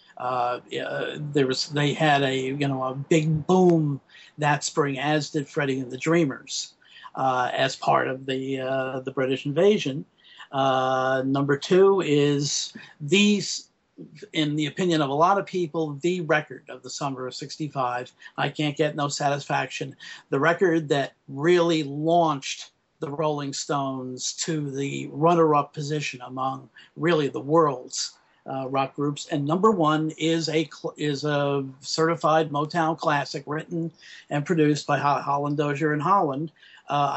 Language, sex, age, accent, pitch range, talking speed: English, male, 50-69, American, 135-155 Hz, 150 wpm